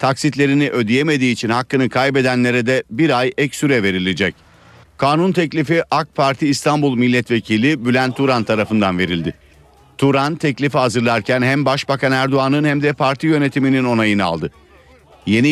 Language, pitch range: Turkish, 115-145 Hz